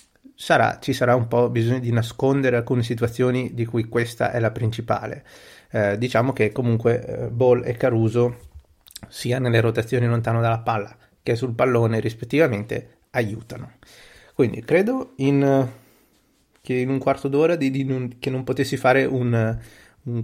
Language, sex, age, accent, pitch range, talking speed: Italian, male, 30-49, native, 115-130 Hz, 155 wpm